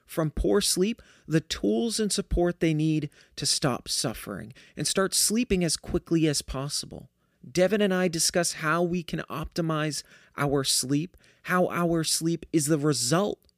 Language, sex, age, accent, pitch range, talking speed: English, male, 30-49, American, 145-190 Hz, 155 wpm